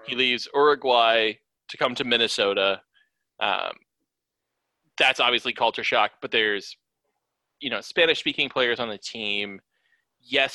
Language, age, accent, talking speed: English, 30-49, American, 130 wpm